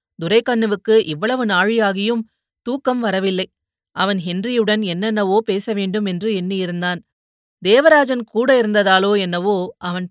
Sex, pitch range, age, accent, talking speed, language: female, 190-235 Hz, 30-49, native, 100 wpm, Tamil